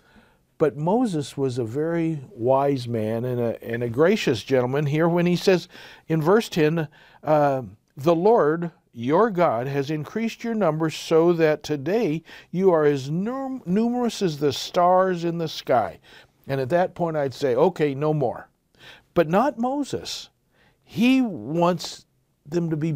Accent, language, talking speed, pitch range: American, English, 155 wpm, 145-205 Hz